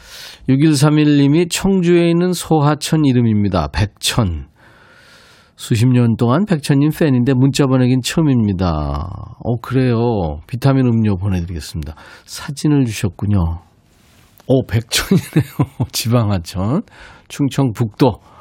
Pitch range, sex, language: 110-150 Hz, male, Korean